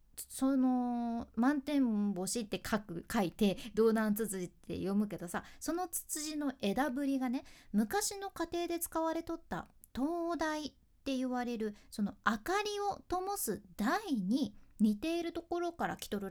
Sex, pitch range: female, 210-305 Hz